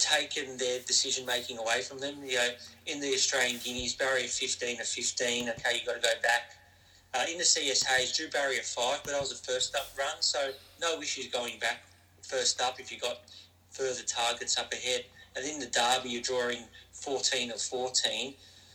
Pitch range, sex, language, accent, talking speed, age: 100-130 Hz, male, English, Australian, 190 wpm, 40-59